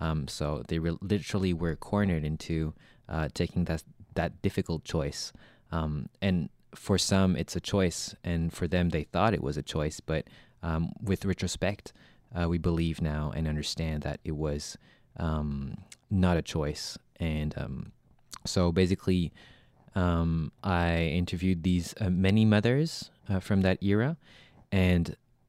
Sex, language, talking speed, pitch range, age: male, English, 150 wpm, 80-95 Hz, 20-39